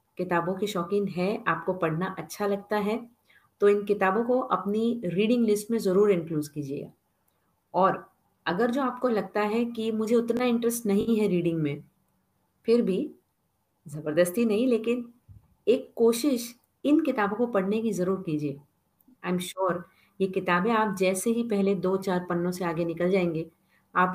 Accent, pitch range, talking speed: native, 175-235 Hz, 160 wpm